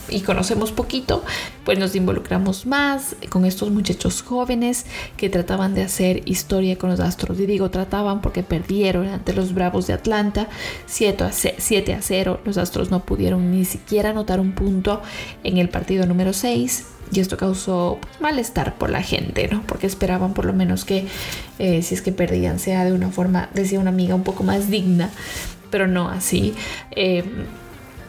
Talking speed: 170 wpm